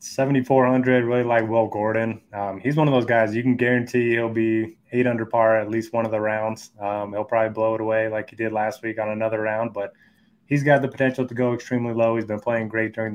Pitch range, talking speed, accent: 110-125 Hz, 240 wpm, American